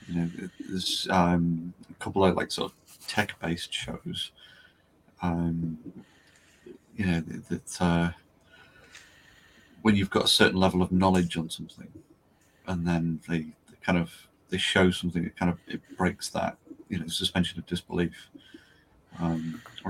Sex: male